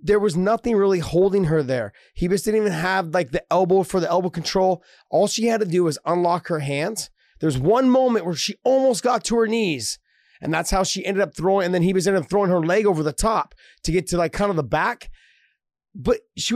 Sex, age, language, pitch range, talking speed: male, 30-49, English, 145-190 Hz, 245 wpm